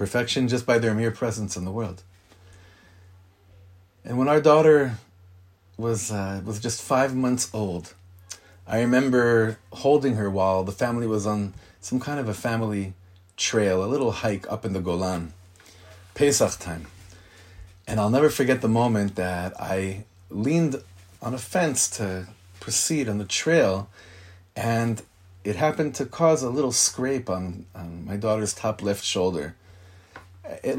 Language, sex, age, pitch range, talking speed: English, male, 30-49, 90-115 Hz, 150 wpm